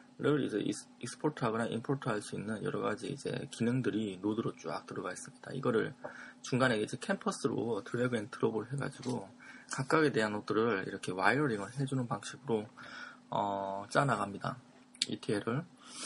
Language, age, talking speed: English, 20-39, 125 wpm